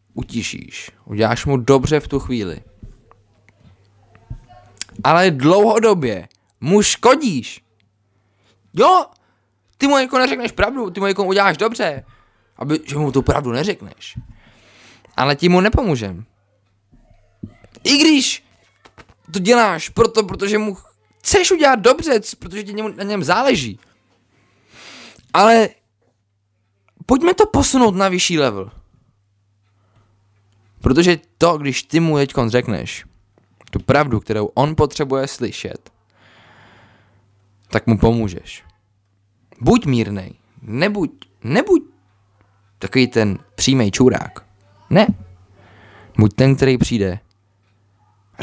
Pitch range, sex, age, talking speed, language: 100-145 Hz, male, 20-39, 105 wpm, Czech